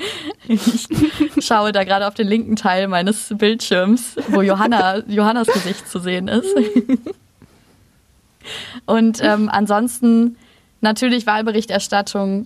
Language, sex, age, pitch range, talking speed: German, female, 20-39, 195-230 Hz, 100 wpm